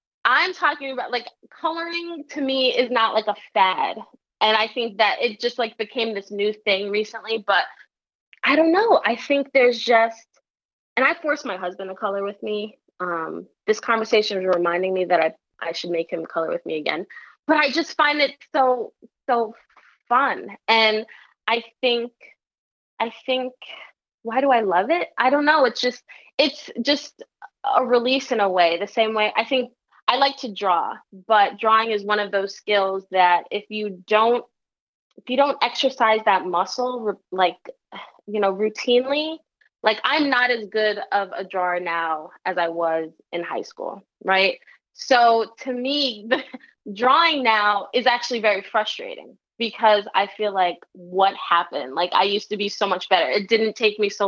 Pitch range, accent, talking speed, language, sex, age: 200-255 Hz, American, 180 wpm, English, female, 20-39